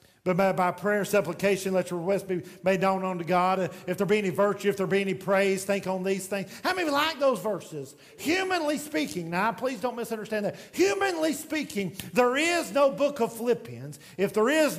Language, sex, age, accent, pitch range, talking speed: English, male, 50-69, American, 140-230 Hz, 210 wpm